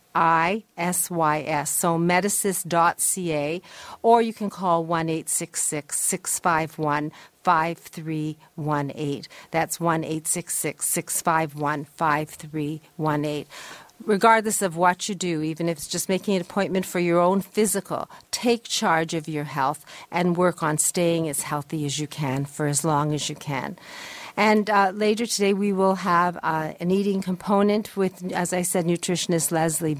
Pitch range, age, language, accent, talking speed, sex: 165-215 Hz, 50-69, English, American, 135 wpm, female